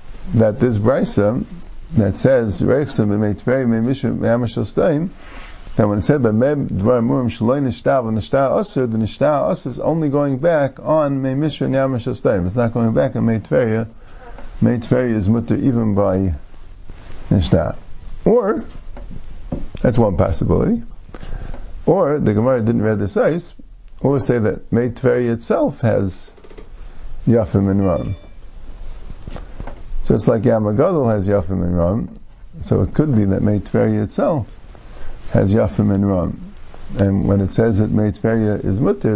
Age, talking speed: 50-69, 135 wpm